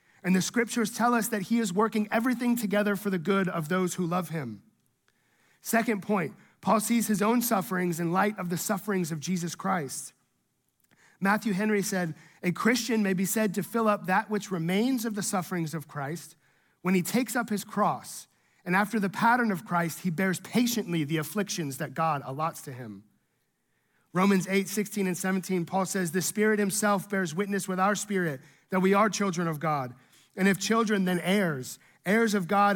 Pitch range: 170-210 Hz